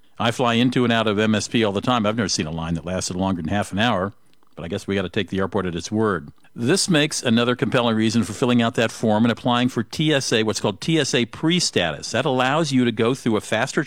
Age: 50-69